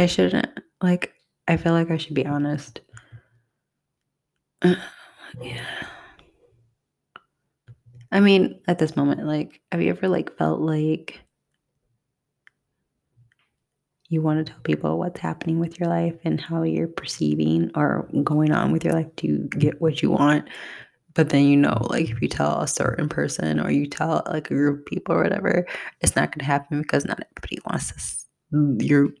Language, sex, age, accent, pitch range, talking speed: English, female, 20-39, American, 140-170 Hz, 165 wpm